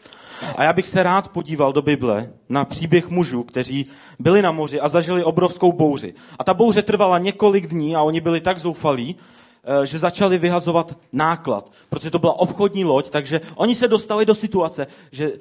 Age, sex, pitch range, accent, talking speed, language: 40-59, male, 150-185 Hz, native, 180 wpm, Czech